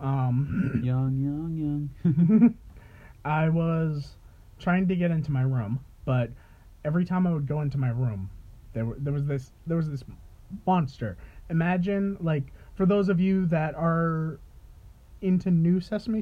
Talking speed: 150 wpm